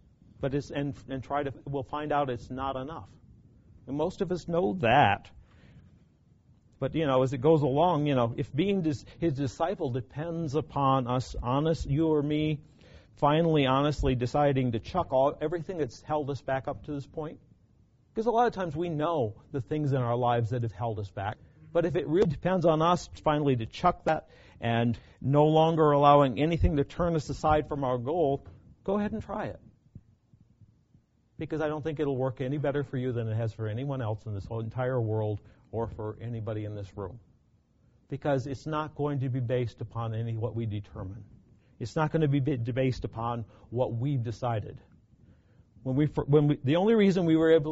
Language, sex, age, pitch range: English, male, 50-69, 115-150 Hz